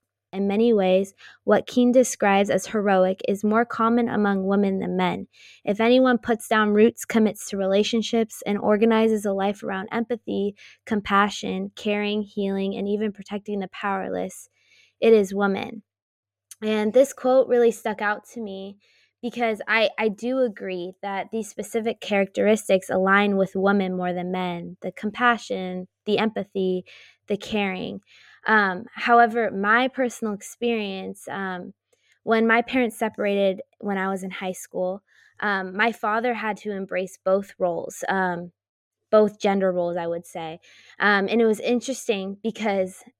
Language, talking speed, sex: English, 145 wpm, female